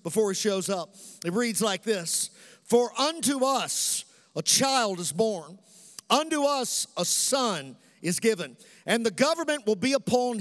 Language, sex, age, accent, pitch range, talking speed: English, male, 50-69, American, 205-250 Hz, 155 wpm